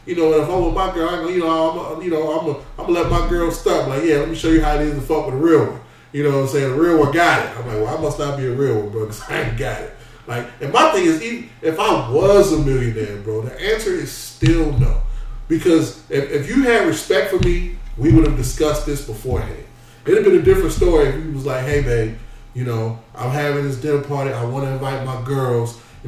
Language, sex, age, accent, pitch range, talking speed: English, male, 20-39, American, 130-170 Hz, 265 wpm